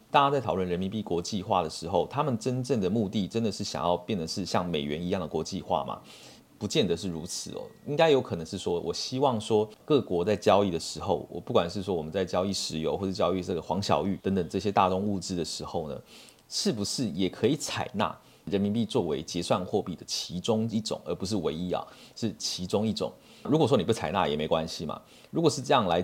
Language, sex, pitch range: Chinese, male, 90-115 Hz